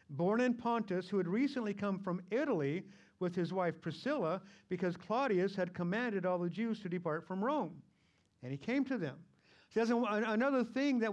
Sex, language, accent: male, English, American